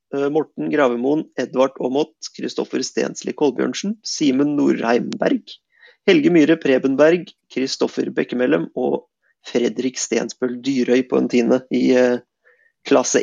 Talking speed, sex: 105 wpm, male